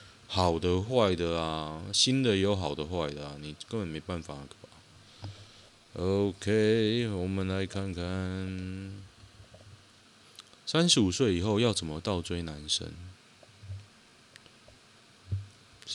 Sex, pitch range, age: male, 90-115 Hz, 20-39